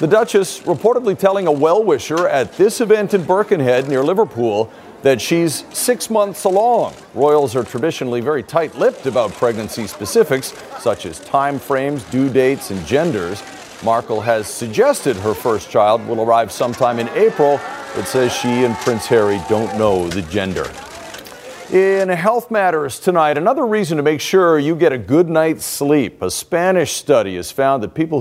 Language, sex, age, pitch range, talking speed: English, male, 50-69, 125-185 Hz, 160 wpm